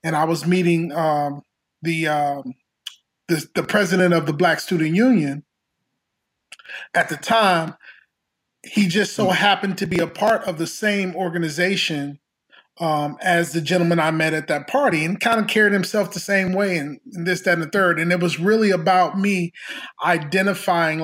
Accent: American